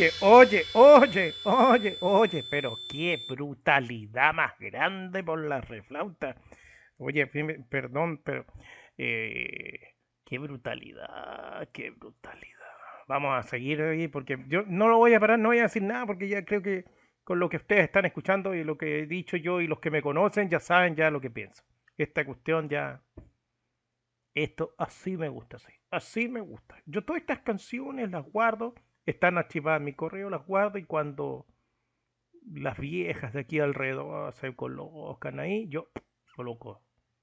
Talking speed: 160 wpm